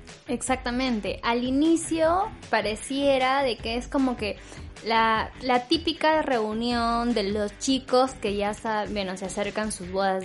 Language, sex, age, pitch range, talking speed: Spanish, female, 10-29, 205-255 Hz, 140 wpm